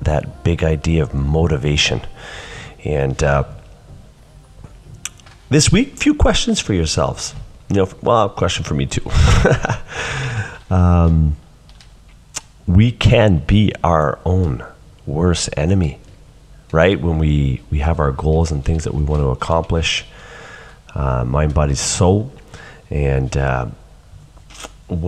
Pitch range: 75-100 Hz